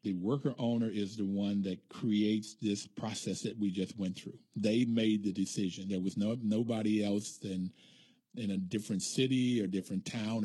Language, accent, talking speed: English, American, 185 wpm